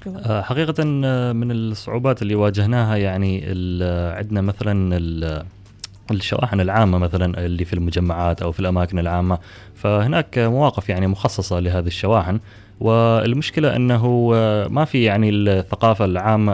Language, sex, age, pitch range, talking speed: Arabic, male, 20-39, 95-115 Hz, 115 wpm